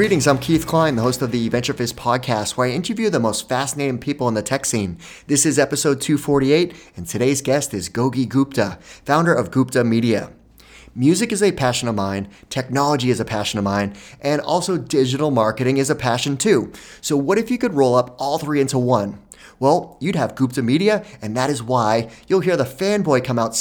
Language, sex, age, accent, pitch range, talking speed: English, male, 30-49, American, 115-155 Hz, 205 wpm